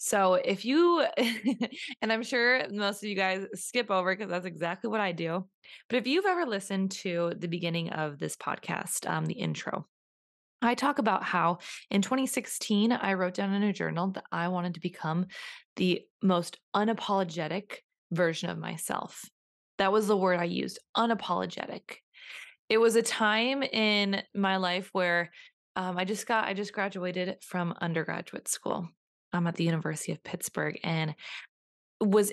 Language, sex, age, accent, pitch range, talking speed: English, female, 20-39, American, 175-225 Hz, 165 wpm